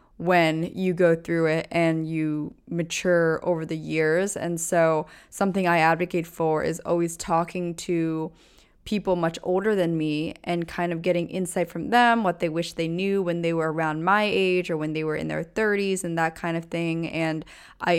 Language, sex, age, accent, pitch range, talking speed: English, female, 20-39, American, 165-195 Hz, 195 wpm